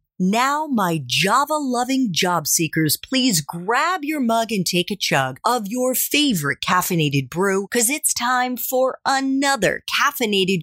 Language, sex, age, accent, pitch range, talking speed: English, female, 40-59, American, 170-265 Hz, 135 wpm